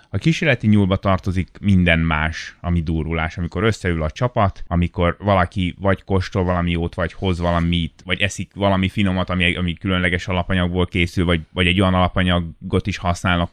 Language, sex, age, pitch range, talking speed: Hungarian, male, 20-39, 85-95 Hz, 165 wpm